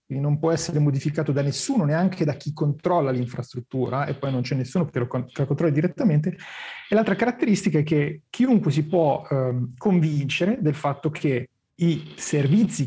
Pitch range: 135-180 Hz